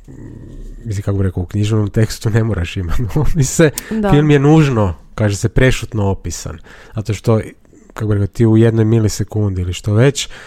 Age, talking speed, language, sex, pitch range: 30-49, 165 wpm, Croatian, male, 100-120 Hz